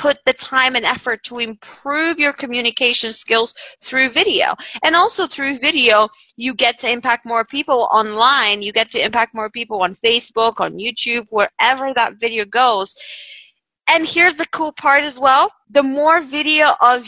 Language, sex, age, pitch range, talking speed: English, female, 30-49, 220-295 Hz, 170 wpm